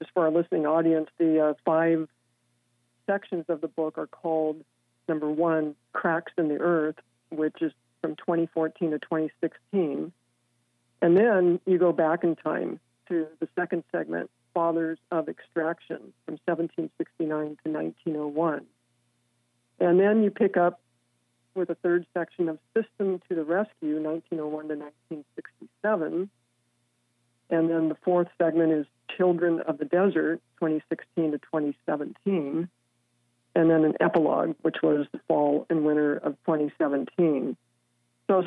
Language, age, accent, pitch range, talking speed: English, 50-69, American, 120-175 Hz, 135 wpm